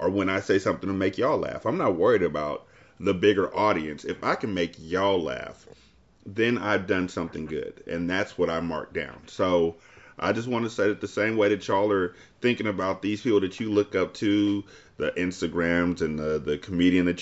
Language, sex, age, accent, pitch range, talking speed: English, male, 30-49, American, 90-115 Hz, 215 wpm